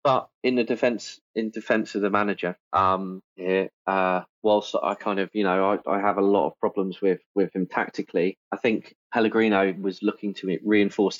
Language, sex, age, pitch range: English, male, 20-39, 95-110 Hz